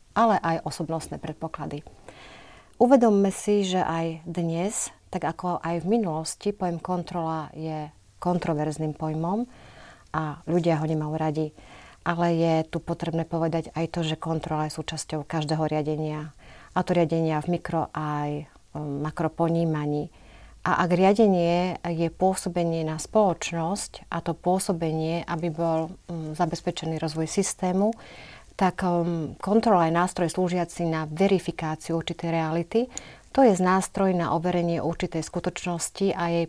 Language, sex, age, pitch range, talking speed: Slovak, female, 40-59, 160-185 Hz, 125 wpm